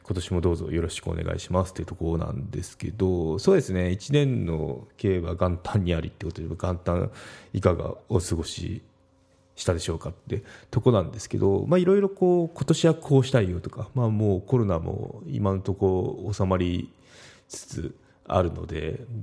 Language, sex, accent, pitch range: Japanese, male, native, 85-115 Hz